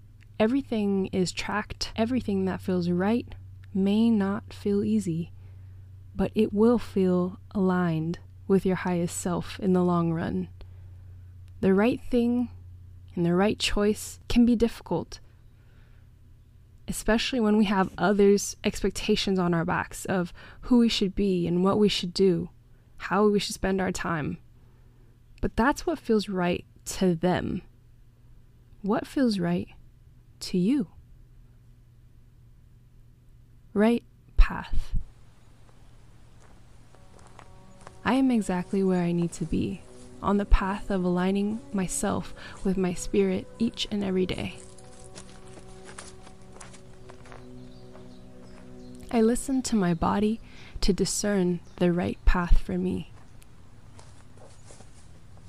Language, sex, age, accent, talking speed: English, female, 20-39, American, 115 wpm